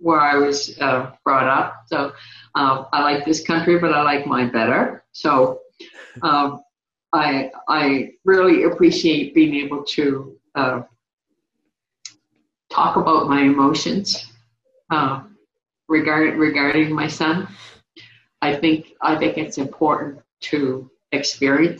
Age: 50-69